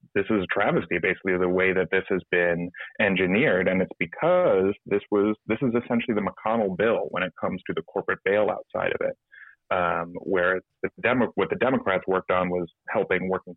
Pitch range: 100-130 Hz